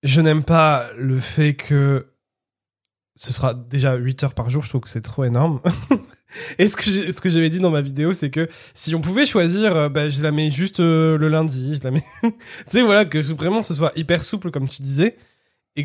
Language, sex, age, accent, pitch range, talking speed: French, male, 20-39, French, 125-165 Hz, 210 wpm